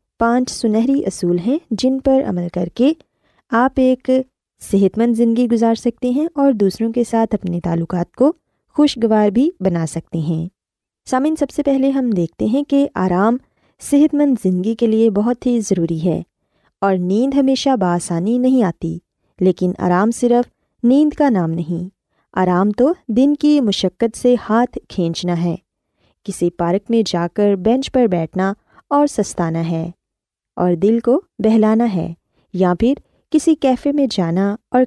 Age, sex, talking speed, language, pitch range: 20-39, female, 160 wpm, Urdu, 180-250 Hz